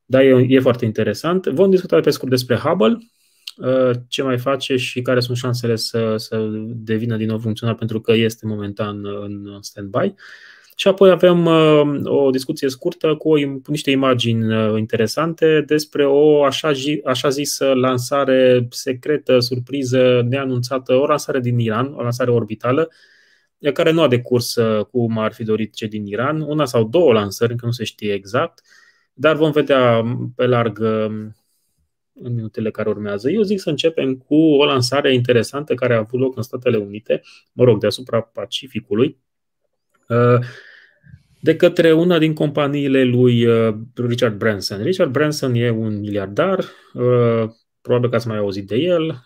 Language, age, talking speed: Romanian, 20-39, 150 wpm